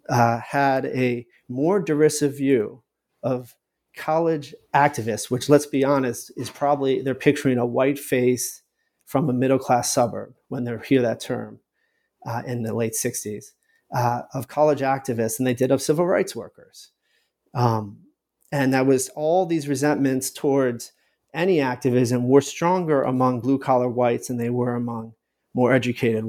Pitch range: 125-145 Hz